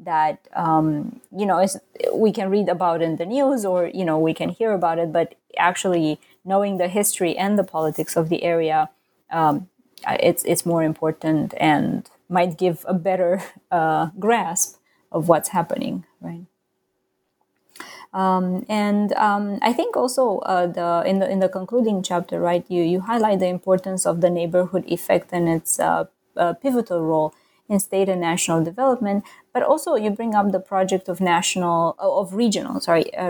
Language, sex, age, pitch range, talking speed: English, female, 20-39, 170-205 Hz, 170 wpm